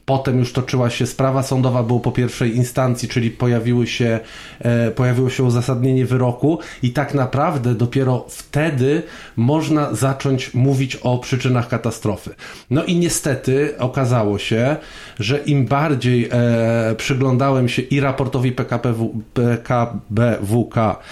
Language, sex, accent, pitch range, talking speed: Polish, male, native, 115-135 Hz, 110 wpm